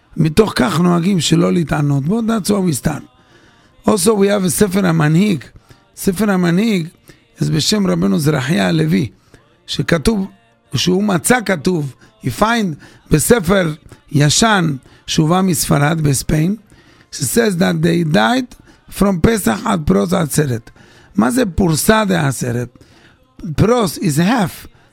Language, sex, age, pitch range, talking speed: English, male, 50-69, 145-200 Hz, 100 wpm